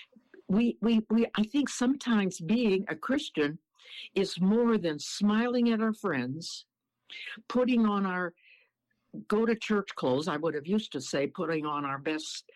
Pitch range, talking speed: 155-215 Hz, 160 wpm